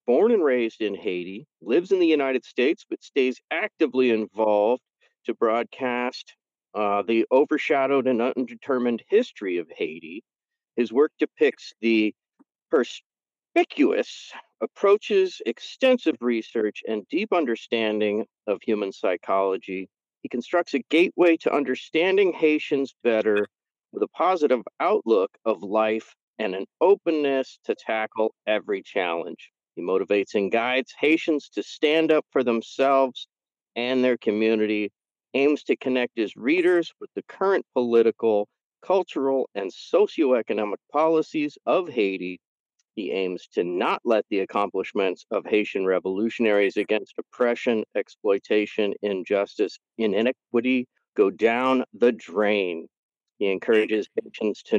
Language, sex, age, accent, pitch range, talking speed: English, male, 50-69, American, 105-165 Hz, 120 wpm